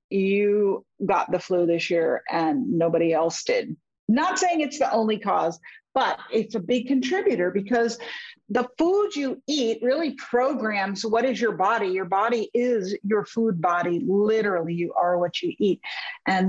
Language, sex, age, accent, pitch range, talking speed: English, female, 50-69, American, 195-265 Hz, 165 wpm